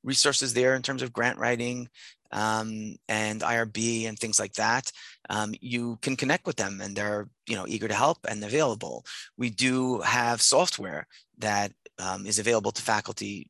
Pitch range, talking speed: 105-130 Hz, 175 wpm